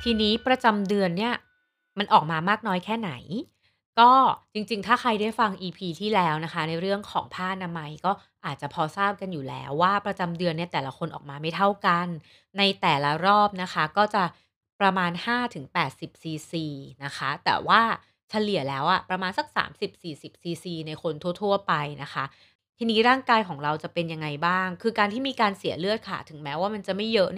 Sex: female